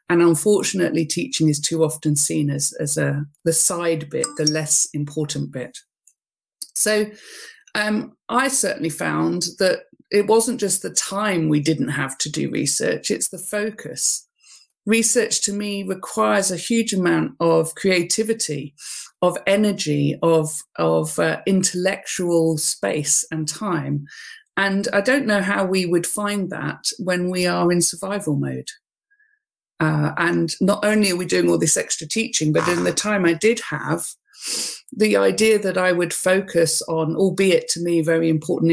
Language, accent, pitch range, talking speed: English, British, 160-210 Hz, 155 wpm